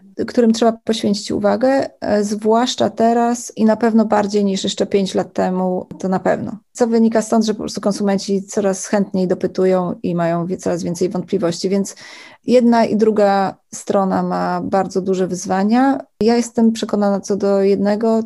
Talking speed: 160 wpm